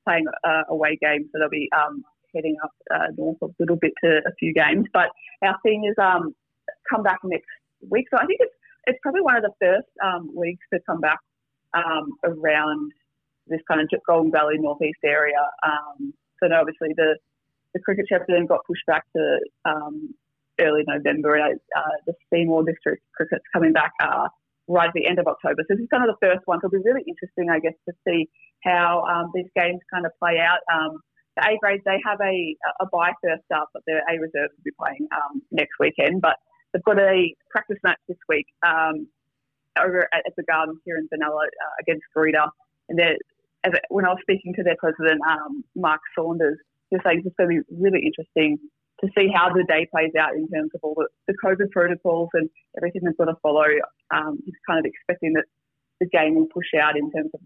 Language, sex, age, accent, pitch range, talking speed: English, female, 20-39, Australian, 155-190 Hz, 215 wpm